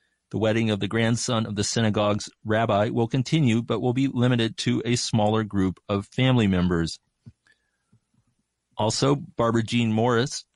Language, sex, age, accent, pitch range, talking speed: English, male, 40-59, American, 105-130 Hz, 150 wpm